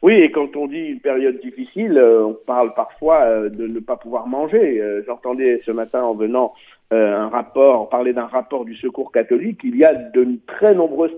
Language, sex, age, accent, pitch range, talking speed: Italian, male, 50-69, French, 125-175 Hz, 190 wpm